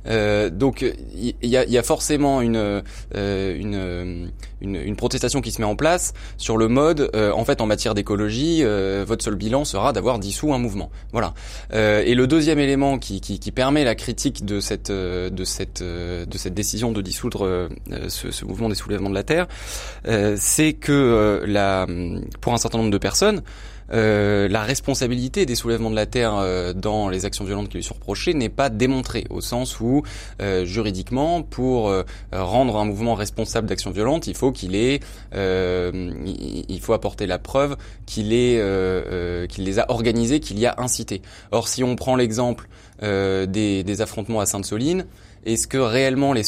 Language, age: French, 20-39